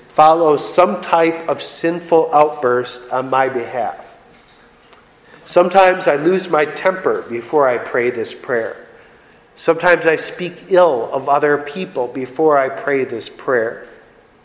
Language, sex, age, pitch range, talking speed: English, male, 40-59, 135-175 Hz, 130 wpm